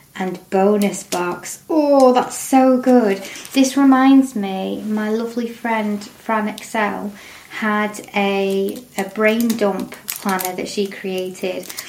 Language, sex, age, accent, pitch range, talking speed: English, female, 20-39, British, 195-230 Hz, 120 wpm